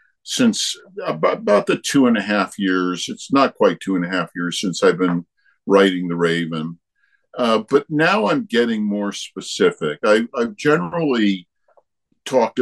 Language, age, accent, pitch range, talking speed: English, 50-69, American, 90-125 Hz, 160 wpm